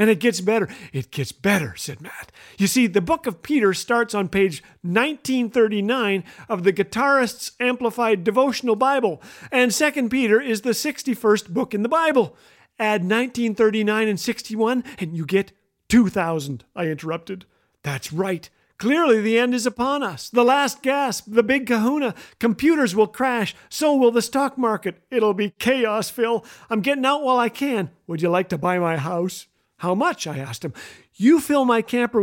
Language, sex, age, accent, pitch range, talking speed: English, male, 50-69, American, 185-245 Hz, 175 wpm